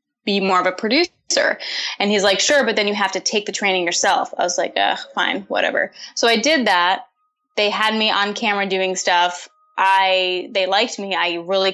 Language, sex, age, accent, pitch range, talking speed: English, female, 10-29, American, 190-235 Hz, 210 wpm